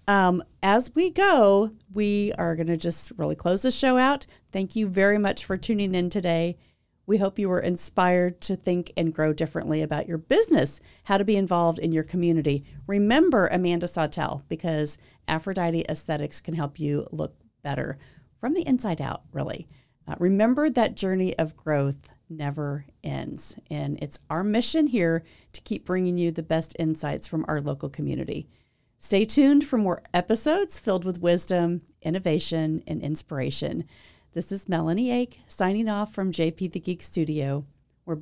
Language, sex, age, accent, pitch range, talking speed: English, female, 40-59, American, 155-205 Hz, 165 wpm